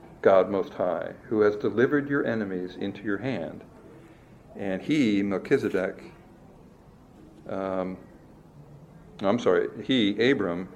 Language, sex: English, male